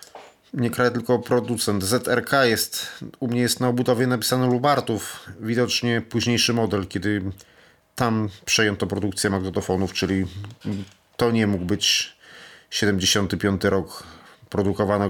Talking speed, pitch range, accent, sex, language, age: 115 wpm, 100-125 Hz, native, male, Polish, 30-49